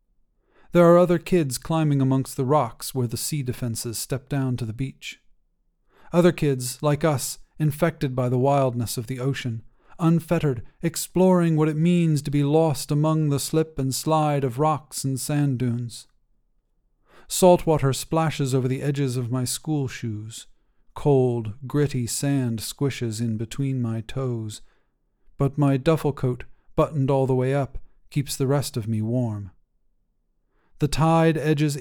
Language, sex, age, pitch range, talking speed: English, male, 40-59, 125-155 Hz, 155 wpm